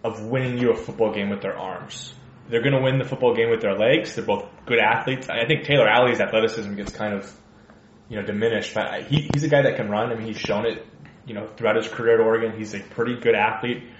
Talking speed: 250 wpm